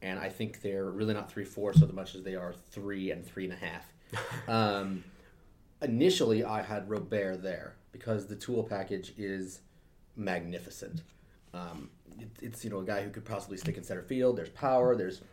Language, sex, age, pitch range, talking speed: English, male, 30-49, 95-110 Hz, 185 wpm